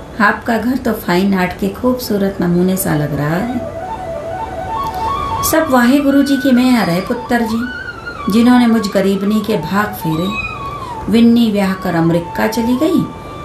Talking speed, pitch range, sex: 55 wpm, 175-245 Hz, female